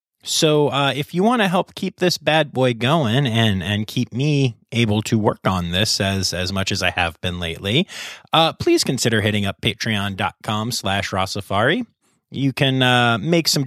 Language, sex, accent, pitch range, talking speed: English, male, American, 105-150 Hz, 180 wpm